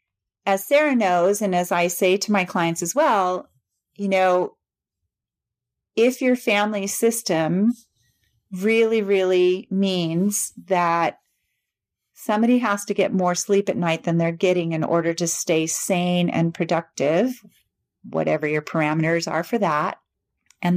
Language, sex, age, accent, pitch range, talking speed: English, female, 40-59, American, 170-205 Hz, 135 wpm